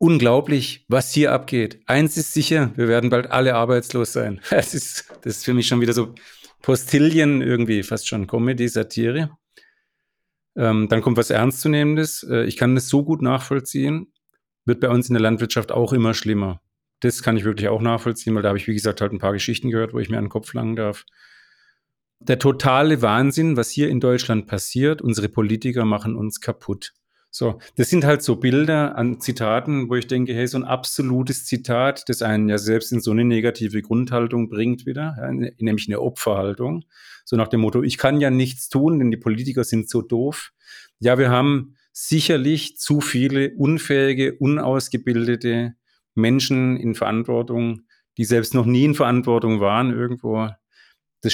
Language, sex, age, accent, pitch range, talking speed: German, male, 40-59, German, 115-135 Hz, 175 wpm